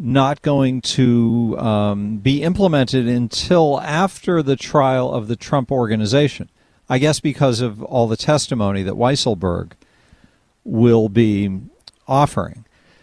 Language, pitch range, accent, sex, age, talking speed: English, 125-175 Hz, American, male, 50-69, 120 wpm